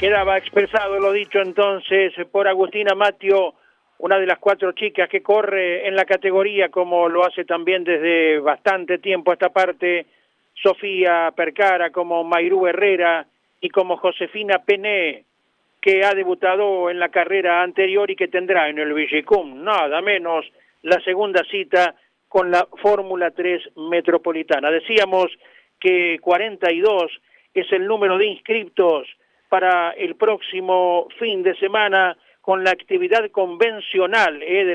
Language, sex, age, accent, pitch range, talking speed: Spanish, male, 40-59, Argentinian, 175-200 Hz, 135 wpm